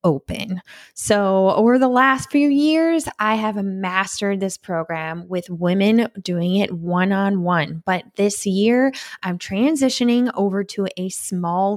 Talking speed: 135 wpm